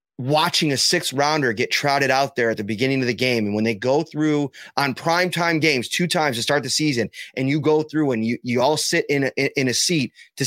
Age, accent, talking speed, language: 30-49, American, 250 wpm, English